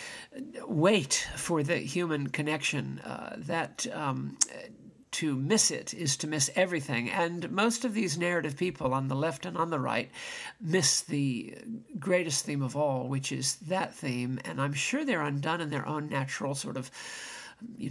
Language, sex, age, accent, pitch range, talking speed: English, male, 50-69, American, 140-185 Hz, 170 wpm